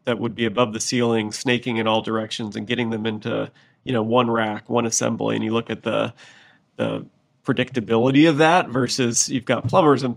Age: 30-49